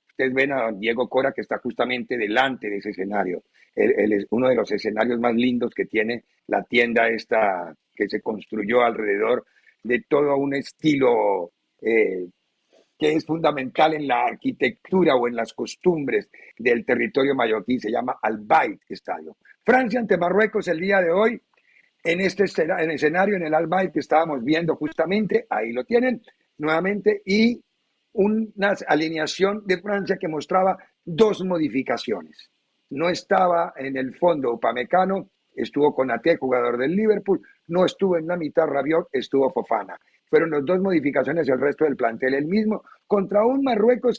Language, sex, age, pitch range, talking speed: Spanish, male, 50-69, 135-200 Hz, 155 wpm